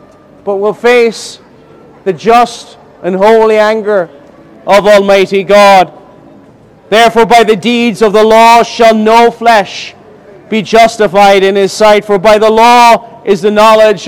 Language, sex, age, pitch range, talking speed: English, male, 40-59, 215-235 Hz, 140 wpm